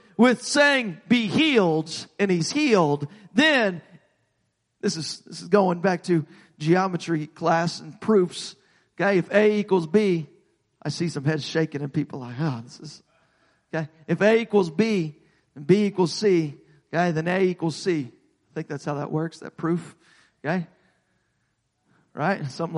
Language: English